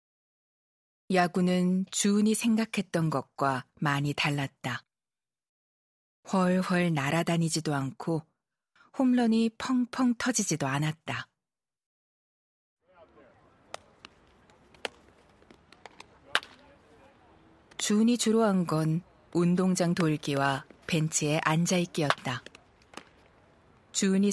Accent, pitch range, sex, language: native, 145-190 Hz, female, Korean